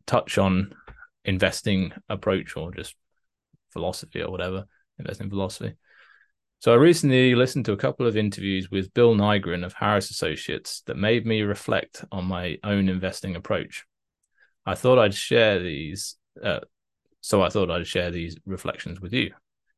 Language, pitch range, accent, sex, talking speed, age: English, 90-105 Hz, British, male, 150 wpm, 20-39